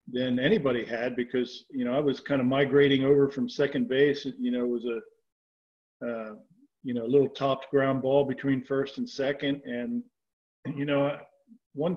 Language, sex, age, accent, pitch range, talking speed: English, male, 50-69, American, 130-150 Hz, 180 wpm